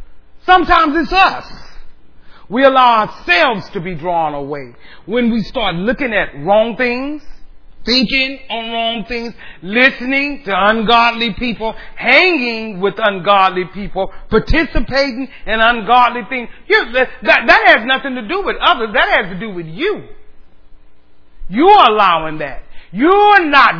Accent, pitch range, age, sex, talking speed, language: American, 175-270 Hz, 40-59, male, 135 wpm, English